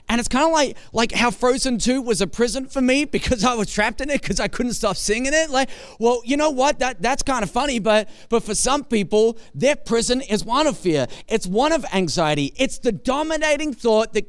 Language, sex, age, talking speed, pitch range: English, male, 30-49, 235 wpm, 200-255 Hz